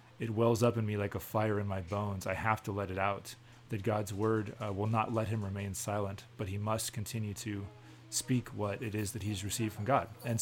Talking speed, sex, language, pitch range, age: 240 wpm, male, English, 105-120 Hz, 30-49